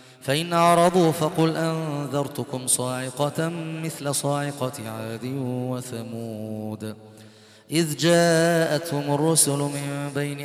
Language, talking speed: Arabic, 80 wpm